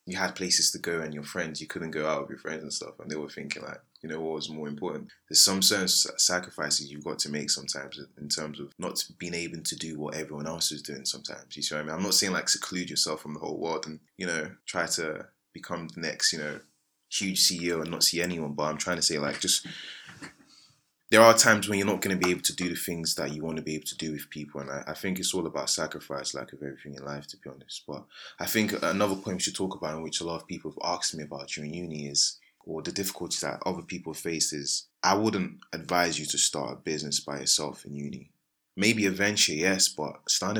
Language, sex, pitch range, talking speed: English, male, 75-95 Hz, 260 wpm